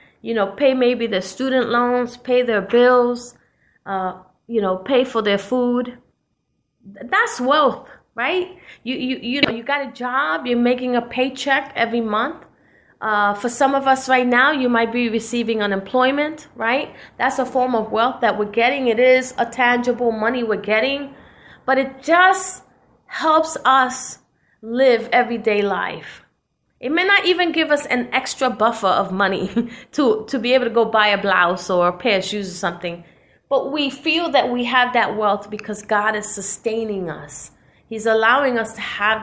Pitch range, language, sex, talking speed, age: 210-265 Hz, English, female, 175 wpm, 30-49